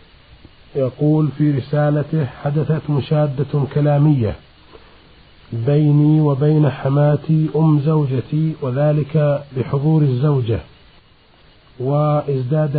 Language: Arabic